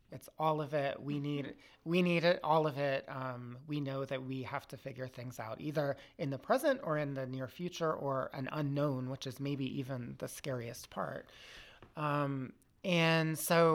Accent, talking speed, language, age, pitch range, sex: American, 190 wpm, English, 30-49, 130-155 Hz, male